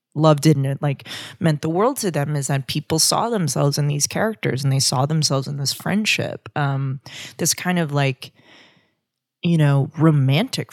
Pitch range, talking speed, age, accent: 135-160 Hz, 180 wpm, 20-39, American